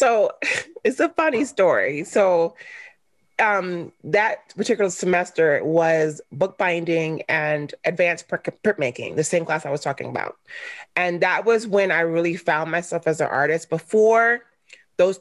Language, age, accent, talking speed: English, 30-49, American, 140 wpm